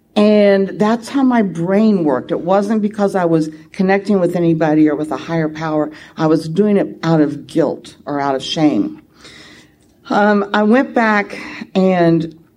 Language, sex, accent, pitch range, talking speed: English, female, American, 165-210 Hz, 165 wpm